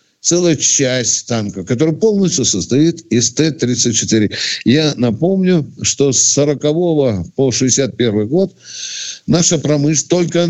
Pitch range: 105-145 Hz